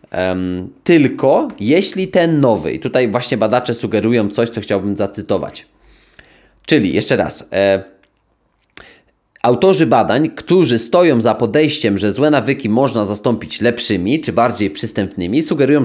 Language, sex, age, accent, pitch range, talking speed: Polish, male, 20-39, native, 110-155 Hz, 130 wpm